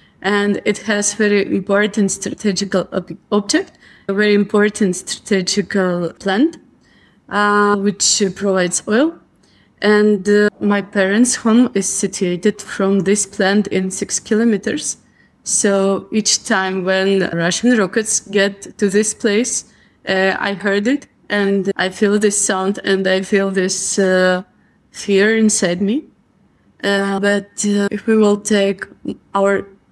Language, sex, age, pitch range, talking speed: English, female, 20-39, 190-210 Hz, 130 wpm